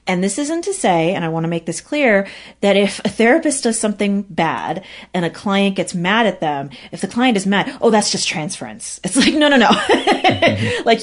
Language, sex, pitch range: English, female, 165-210 Hz